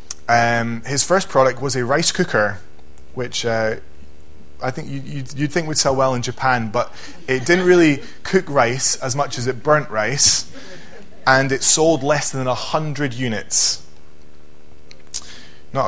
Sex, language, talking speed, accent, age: male, English, 150 wpm, British, 20-39